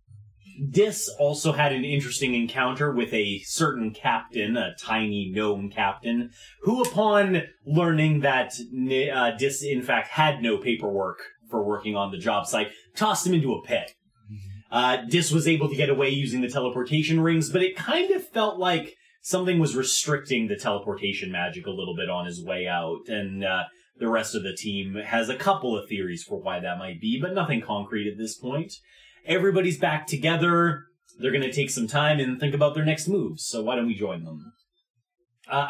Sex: male